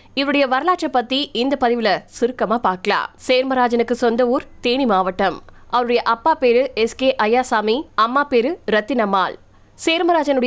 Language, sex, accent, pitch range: Tamil, female, native, 220-275 Hz